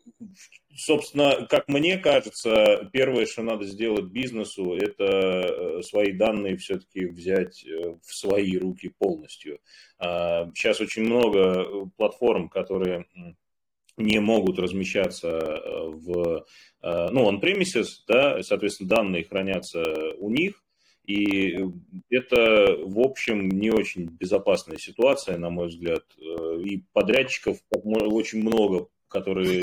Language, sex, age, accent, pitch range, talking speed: Russian, male, 30-49, native, 95-150 Hz, 105 wpm